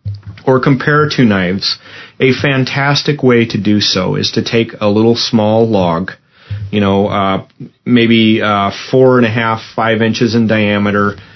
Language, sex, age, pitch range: English, male, 30-49, 100-120 Hz